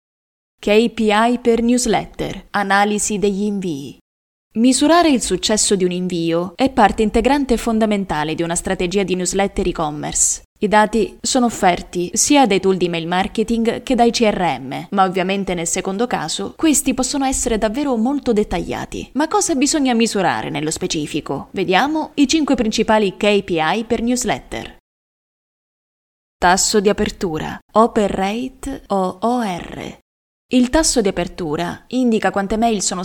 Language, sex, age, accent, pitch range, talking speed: Italian, female, 20-39, native, 185-235 Hz, 135 wpm